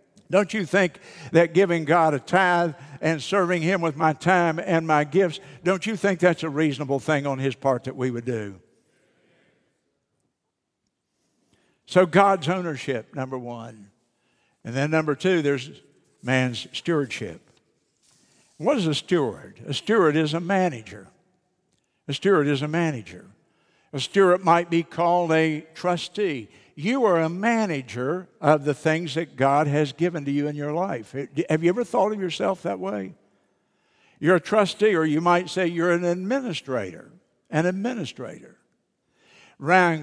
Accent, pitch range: American, 140-185 Hz